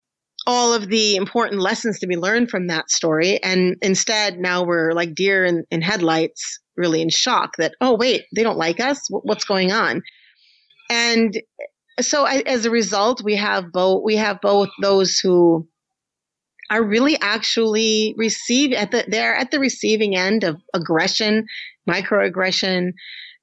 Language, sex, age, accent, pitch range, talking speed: English, female, 30-49, American, 180-230 Hz, 155 wpm